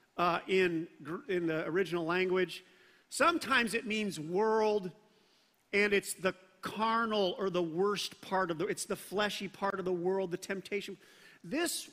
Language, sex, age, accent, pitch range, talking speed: English, male, 50-69, American, 185-225 Hz, 160 wpm